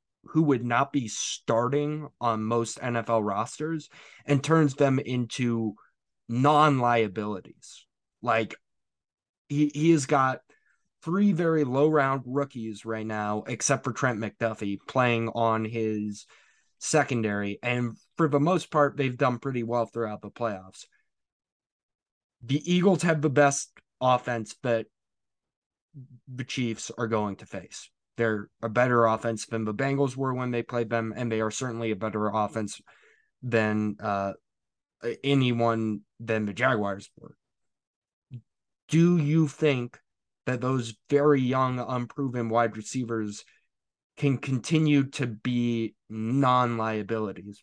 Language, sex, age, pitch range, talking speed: English, male, 20-39, 110-140 Hz, 125 wpm